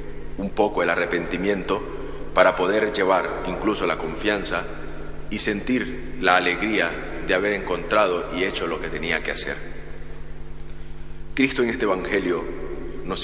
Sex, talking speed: male, 130 wpm